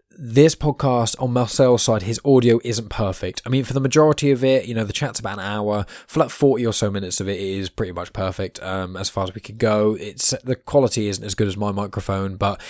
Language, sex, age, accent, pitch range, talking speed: English, male, 10-29, British, 95-115 Hz, 250 wpm